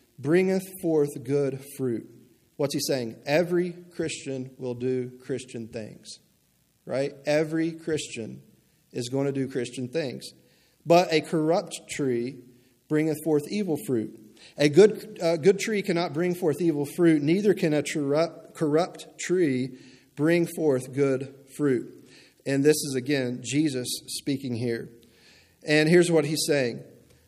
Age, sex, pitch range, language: 40-59, male, 125-160 Hz, English